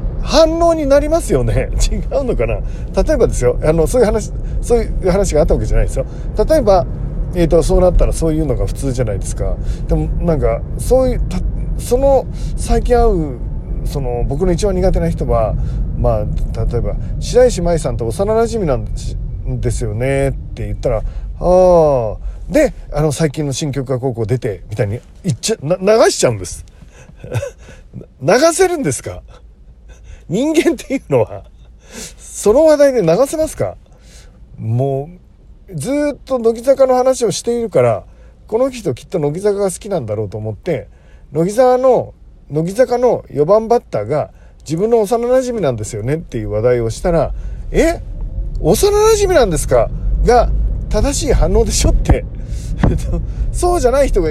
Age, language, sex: 40-59, Japanese, male